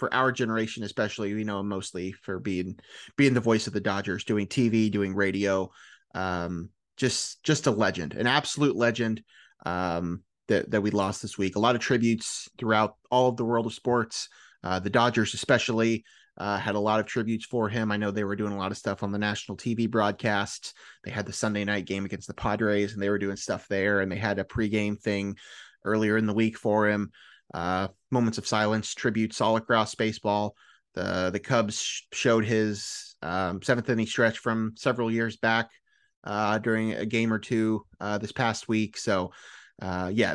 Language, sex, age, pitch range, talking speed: English, male, 30-49, 100-125 Hz, 195 wpm